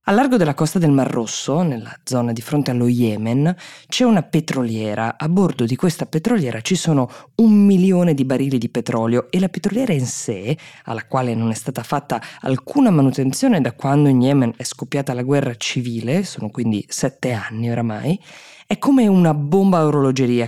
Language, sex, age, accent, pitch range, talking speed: Italian, female, 20-39, native, 120-165 Hz, 180 wpm